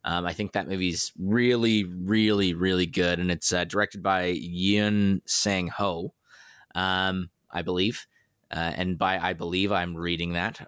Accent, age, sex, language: American, 20-39, male, English